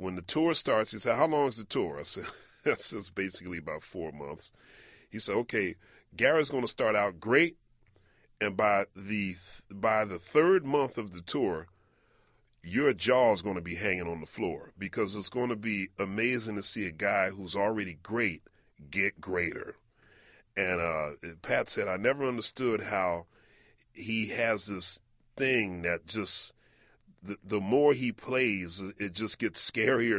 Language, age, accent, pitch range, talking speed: English, 30-49, American, 90-115 Hz, 170 wpm